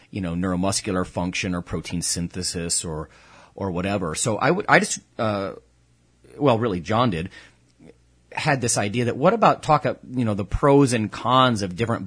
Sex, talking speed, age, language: male, 180 wpm, 30-49, English